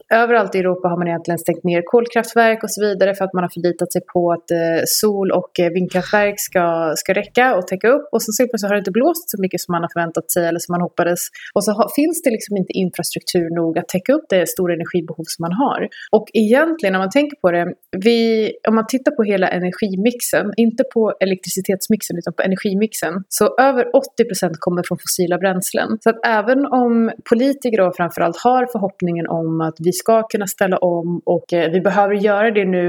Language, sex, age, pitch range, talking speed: Swedish, female, 30-49, 175-215 Hz, 205 wpm